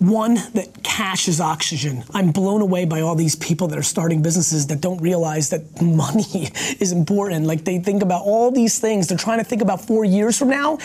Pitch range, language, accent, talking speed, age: 165-200 Hz, English, American, 215 wpm, 30-49